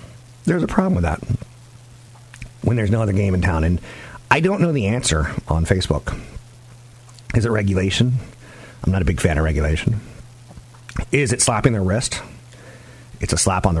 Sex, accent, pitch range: male, American, 95-120 Hz